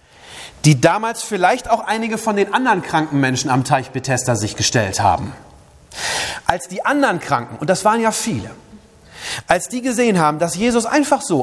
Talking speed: 175 wpm